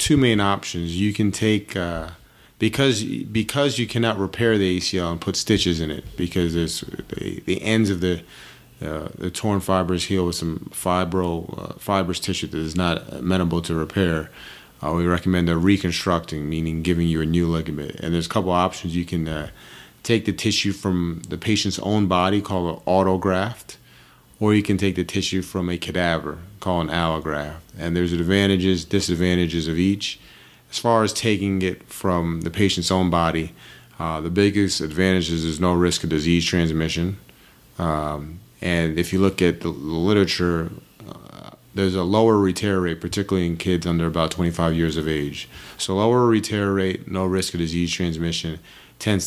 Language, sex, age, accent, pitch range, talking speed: English, male, 30-49, American, 85-100 Hz, 180 wpm